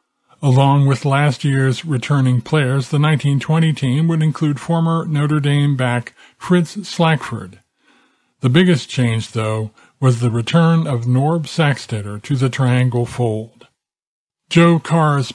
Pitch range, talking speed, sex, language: 120-150 Hz, 130 wpm, male, English